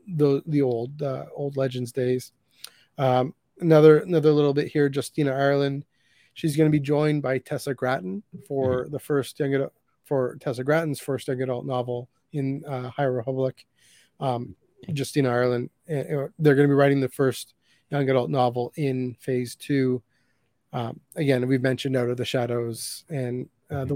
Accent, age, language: American, 30-49, English